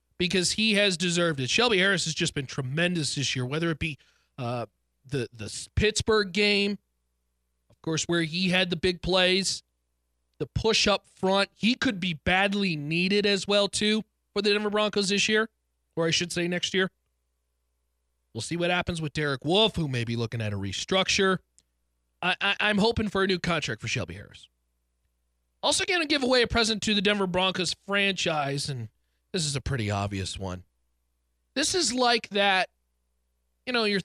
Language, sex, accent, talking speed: English, male, American, 185 wpm